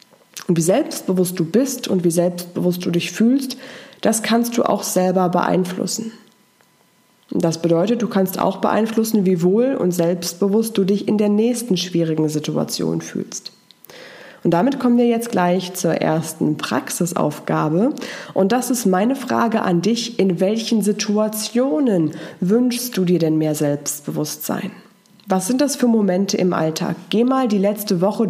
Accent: German